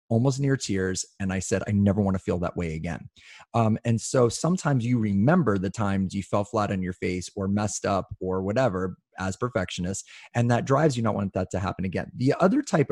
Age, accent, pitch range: 30-49, American, 95-125 Hz